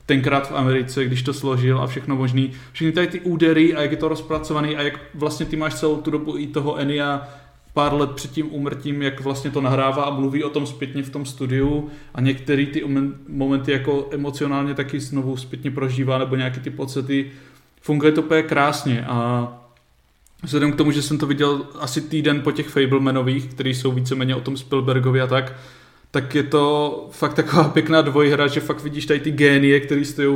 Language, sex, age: Czech, male, 20-39